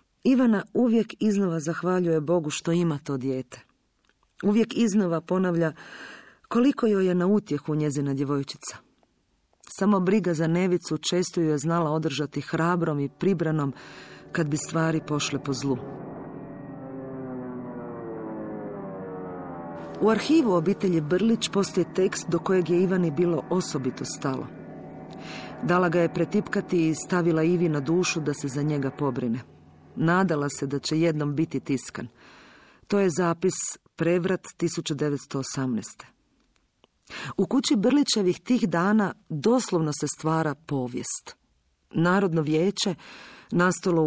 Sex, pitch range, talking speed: female, 145-185 Hz, 120 wpm